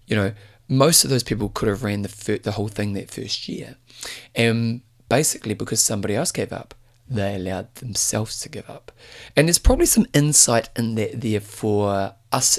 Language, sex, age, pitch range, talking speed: English, male, 30-49, 105-130 Hz, 190 wpm